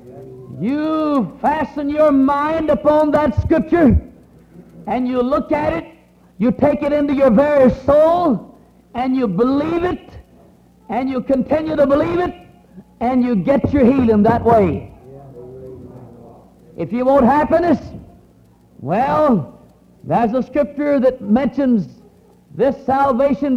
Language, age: English, 60-79